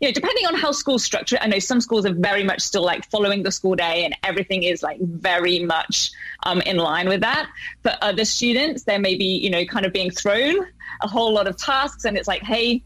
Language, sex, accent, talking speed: English, female, British, 240 wpm